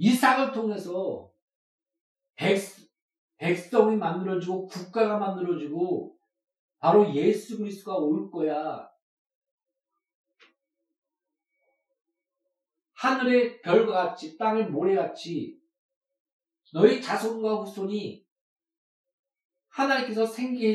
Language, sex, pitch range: Korean, male, 175-275 Hz